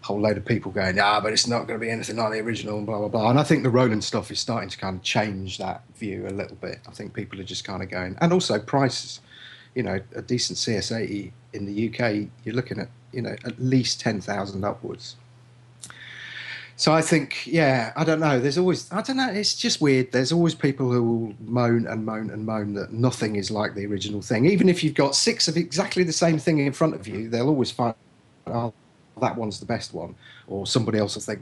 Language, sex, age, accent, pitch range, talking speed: English, male, 40-59, British, 105-135 Hz, 240 wpm